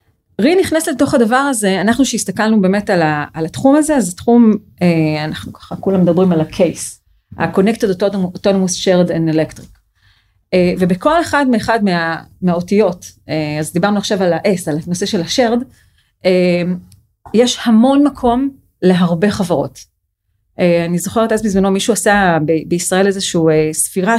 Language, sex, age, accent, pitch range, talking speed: Hebrew, female, 30-49, native, 165-230 Hz, 130 wpm